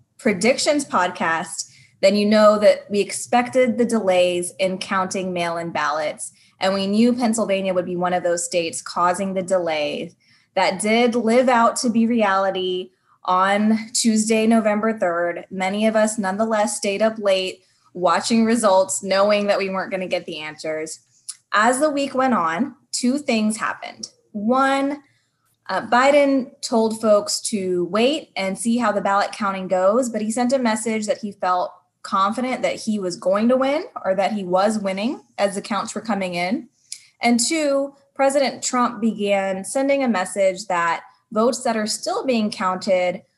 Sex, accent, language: female, American, English